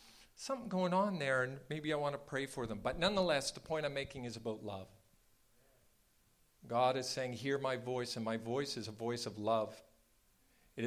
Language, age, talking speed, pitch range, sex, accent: English, 50-69, 200 wpm, 115-155 Hz, male, American